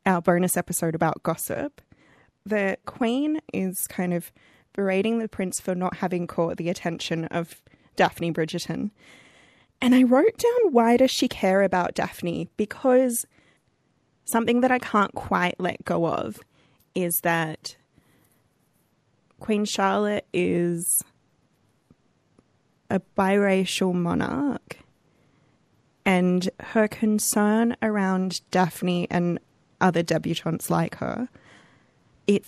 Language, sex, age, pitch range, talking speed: English, female, 20-39, 170-210 Hz, 110 wpm